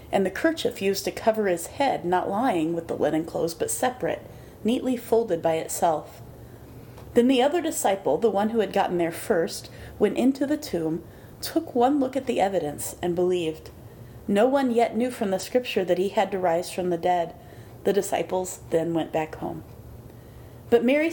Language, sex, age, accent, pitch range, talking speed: English, female, 30-49, American, 160-230 Hz, 185 wpm